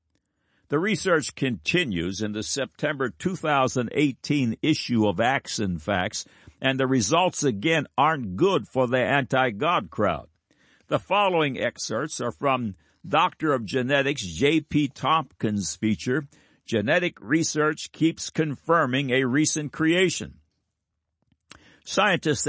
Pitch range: 105-145 Hz